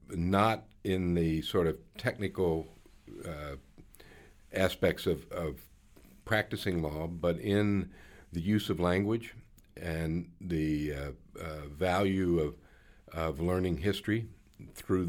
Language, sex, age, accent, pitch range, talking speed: English, male, 60-79, American, 85-100 Hz, 110 wpm